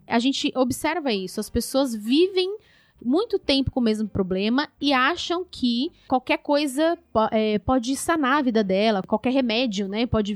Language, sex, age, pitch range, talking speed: Portuguese, female, 20-39, 205-285 Hz, 170 wpm